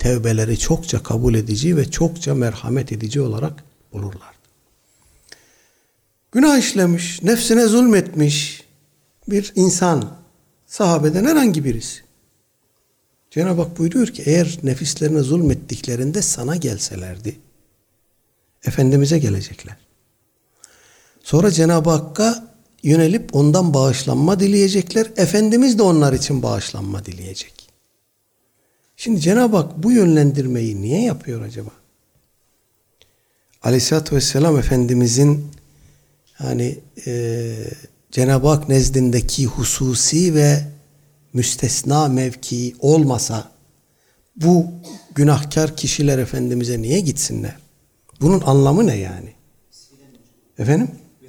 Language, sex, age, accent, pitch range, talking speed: Turkish, male, 60-79, native, 125-170 Hz, 90 wpm